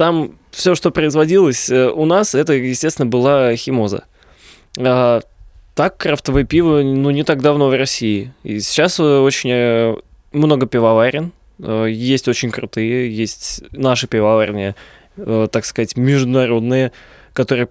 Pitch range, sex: 115-145 Hz, male